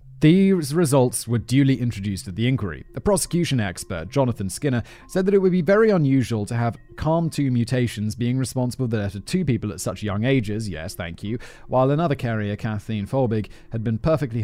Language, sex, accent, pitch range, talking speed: English, male, British, 105-140 Hz, 190 wpm